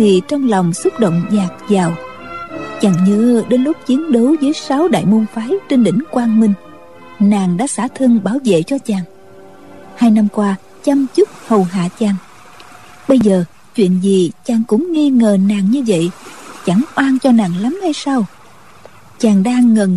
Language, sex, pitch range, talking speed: Vietnamese, female, 190-250 Hz, 175 wpm